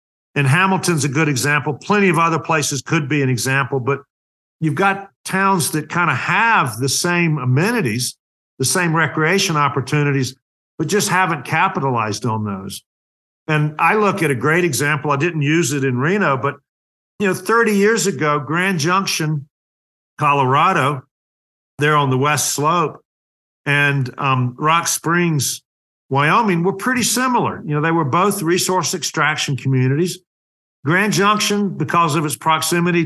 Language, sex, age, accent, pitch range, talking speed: English, male, 50-69, American, 135-175 Hz, 150 wpm